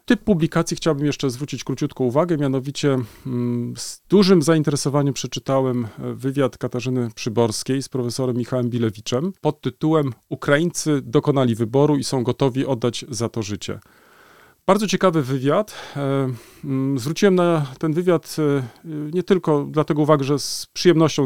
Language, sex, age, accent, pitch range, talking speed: Polish, male, 40-59, native, 125-155 Hz, 125 wpm